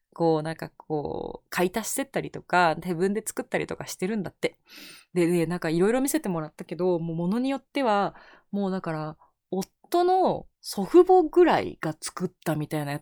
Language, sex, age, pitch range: Japanese, female, 20-39, 160-245 Hz